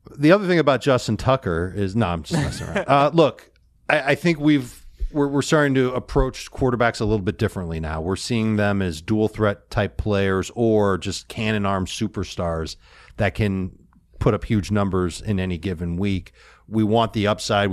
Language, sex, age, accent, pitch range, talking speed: English, male, 40-59, American, 95-120 Hz, 190 wpm